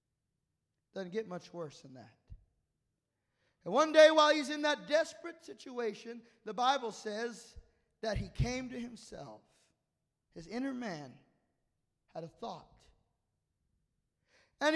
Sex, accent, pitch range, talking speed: male, American, 260-335 Hz, 120 wpm